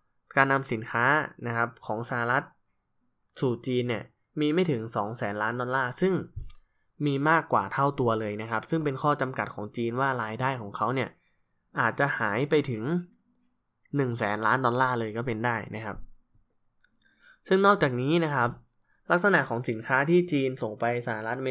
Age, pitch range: 10-29, 115-140 Hz